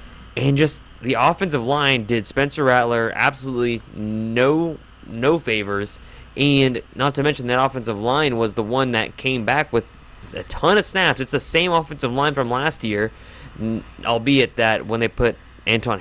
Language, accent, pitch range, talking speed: English, American, 110-145 Hz, 165 wpm